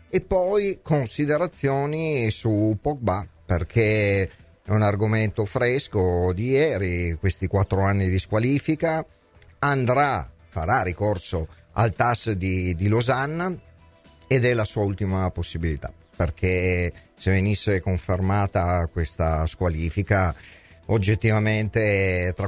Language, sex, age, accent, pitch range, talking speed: Italian, male, 40-59, native, 95-120 Hz, 105 wpm